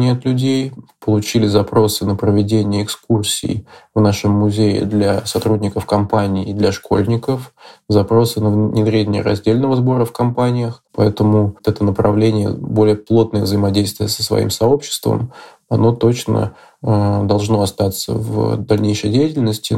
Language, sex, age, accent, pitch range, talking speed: Russian, male, 20-39, native, 105-115 Hz, 120 wpm